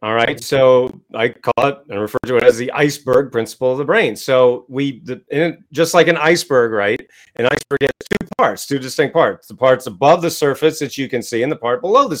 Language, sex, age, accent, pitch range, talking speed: English, male, 40-59, American, 130-190 Hz, 235 wpm